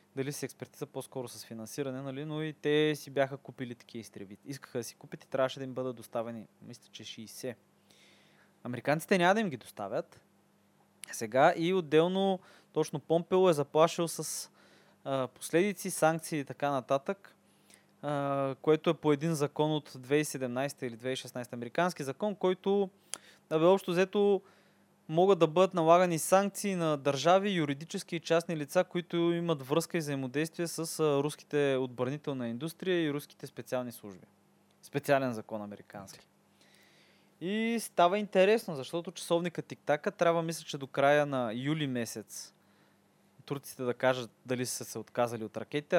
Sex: male